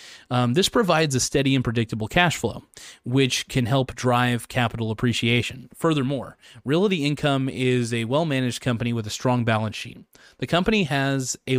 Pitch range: 120-140 Hz